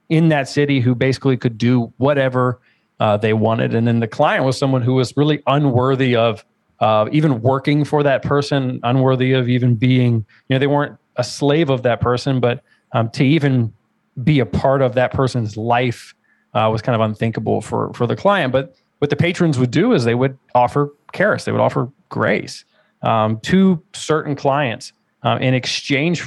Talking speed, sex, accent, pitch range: 190 wpm, male, American, 120-140 Hz